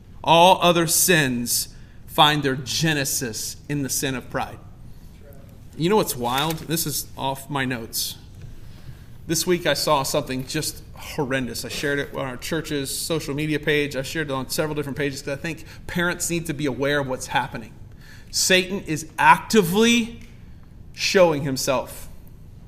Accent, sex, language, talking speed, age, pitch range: American, male, English, 155 wpm, 40-59, 125-170 Hz